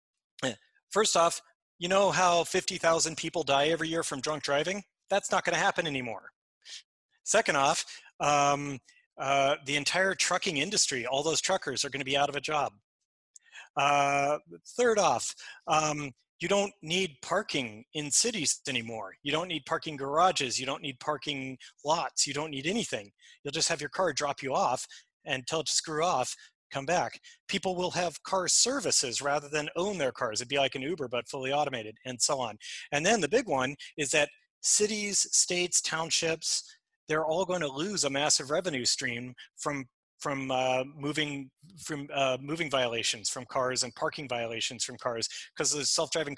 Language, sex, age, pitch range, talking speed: English, male, 30-49, 135-175 Hz, 175 wpm